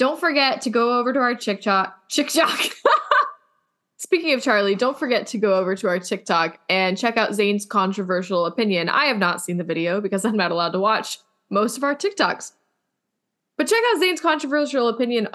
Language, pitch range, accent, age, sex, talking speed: English, 195-275 Hz, American, 10-29, female, 190 wpm